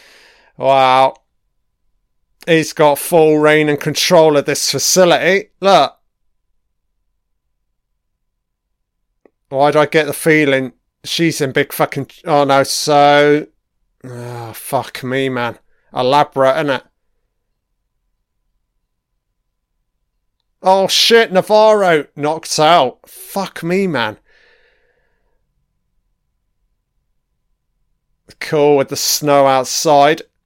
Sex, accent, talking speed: male, British, 85 wpm